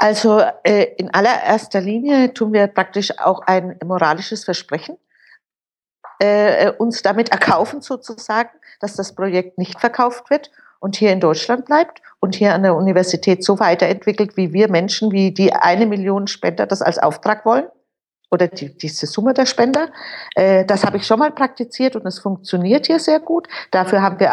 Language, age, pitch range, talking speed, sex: German, 50-69, 190-245 Hz, 170 wpm, female